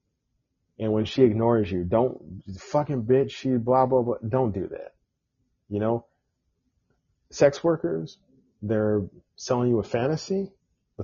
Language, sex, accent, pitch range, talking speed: English, male, American, 105-130 Hz, 135 wpm